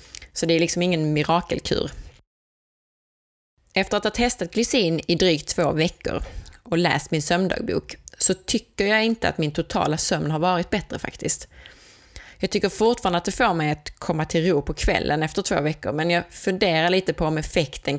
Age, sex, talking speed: 20-39, female, 180 wpm